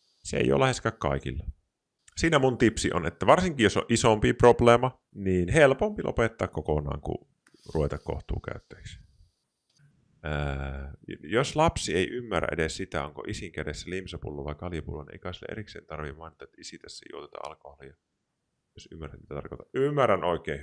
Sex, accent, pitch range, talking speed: male, native, 75-110 Hz, 140 wpm